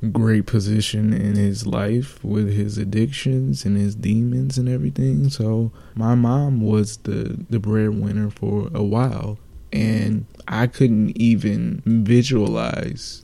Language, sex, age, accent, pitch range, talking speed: English, male, 20-39, American, 105-120 Hz, 125 wpm